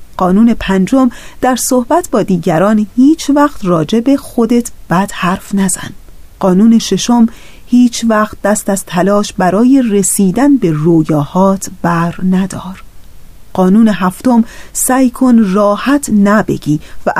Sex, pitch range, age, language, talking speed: female, 185-245 Hz, 30-49, Persian, 115 wpm